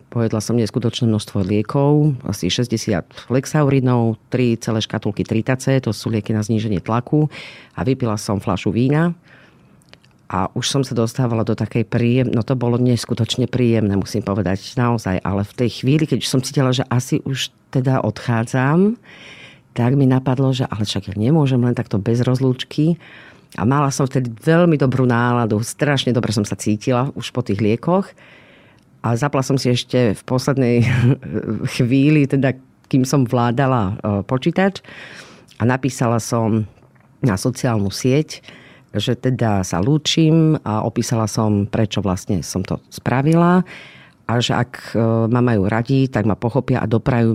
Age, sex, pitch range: 40-59, female, 110-135 Hz